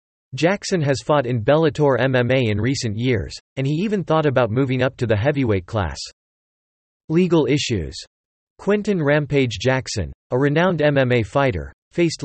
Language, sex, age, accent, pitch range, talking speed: English, male, 40-59, American, 110-150 Hz, 145 wpm